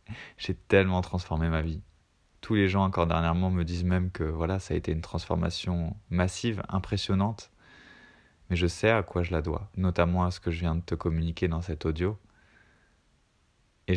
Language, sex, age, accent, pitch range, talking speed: French, male, 20-39, French, 85-100 Hz, 185 wpm